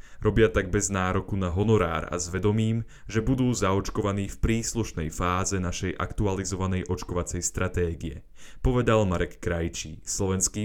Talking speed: 130 wpm